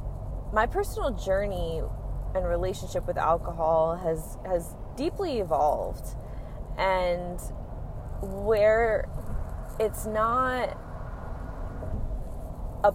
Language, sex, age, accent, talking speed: English, female, 20-39, American, 75 wpm